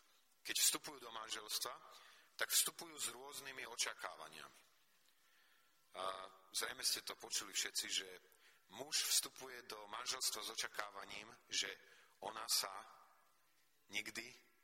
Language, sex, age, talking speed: Slovak, male, 40-59, 105 wpm